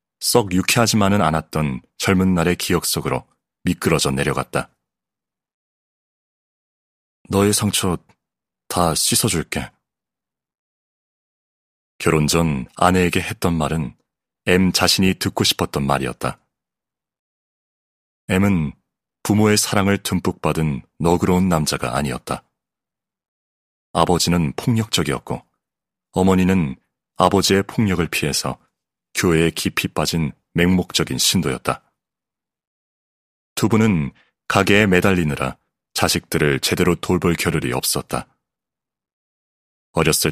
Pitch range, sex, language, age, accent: 75-100 Hz, male, Korean, 30-49, native